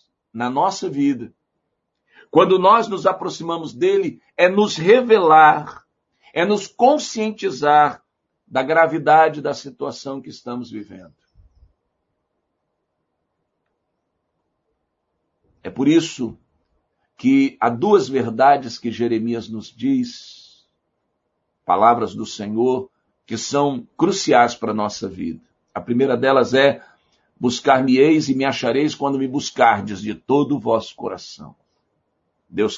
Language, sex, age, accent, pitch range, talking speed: Portuguese, male, 60-79, Brazilian, 105-160 Hz, 110 wpm